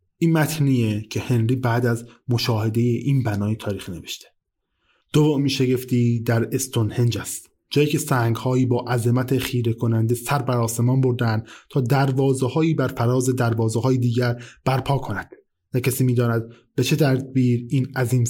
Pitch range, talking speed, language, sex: 115-150 Hz, 145 wpm, Persian, male